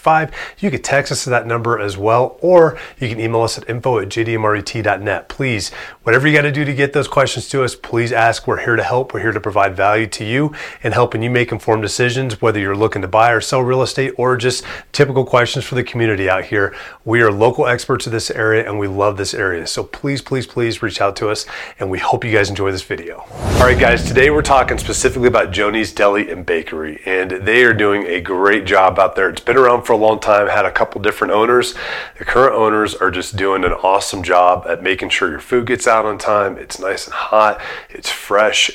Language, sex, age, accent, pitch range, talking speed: English, male, 30-49, American, 105-125 Hz, 235 wpm